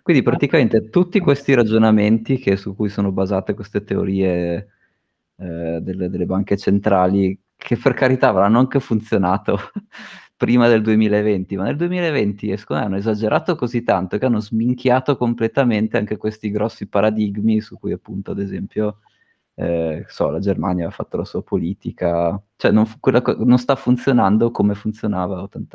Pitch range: 100-125 Hz